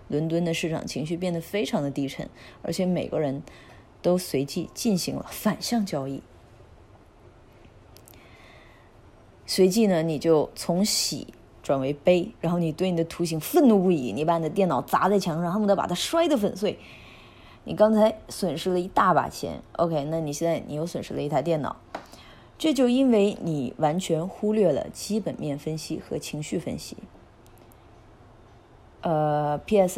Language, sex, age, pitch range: Chinese, female, 20-39, 135-180 Hz